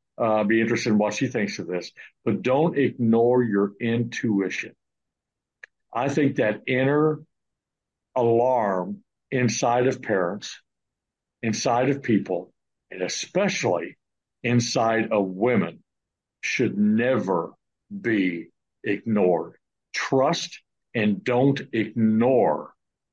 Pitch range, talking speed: 105-135 Hz, 100 wpm